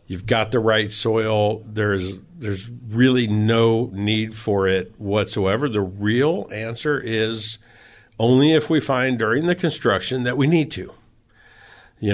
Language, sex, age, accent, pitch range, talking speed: English, male, 50-69, American, 105-125 Hz, 145 wpm